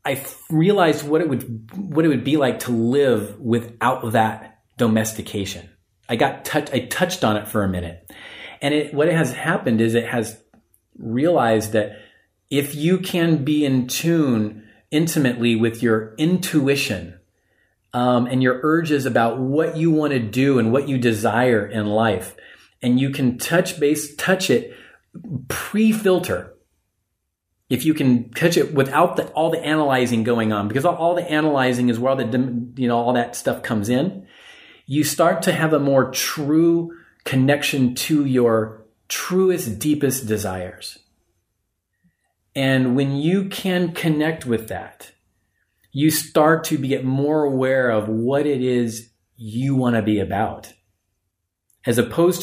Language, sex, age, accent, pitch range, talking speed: English, male, 30-49, American, 110-155 Hz, 150 wpm